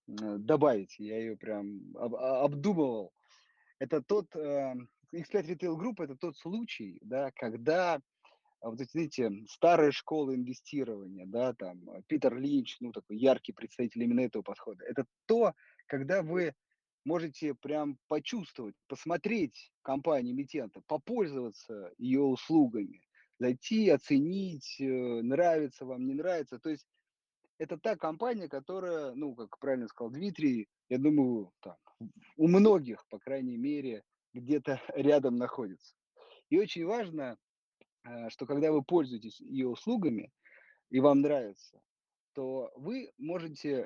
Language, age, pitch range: Russian, 30-49, 125-175 Hz